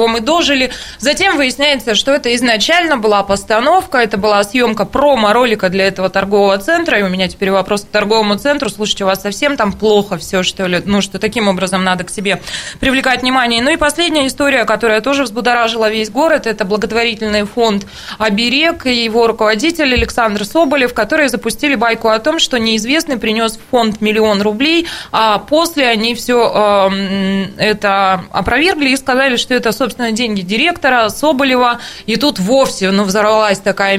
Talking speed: 160 wpm